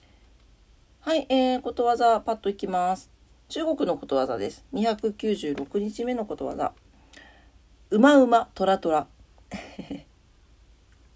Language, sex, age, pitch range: Japanese, female, 40-59, 165-240 Hz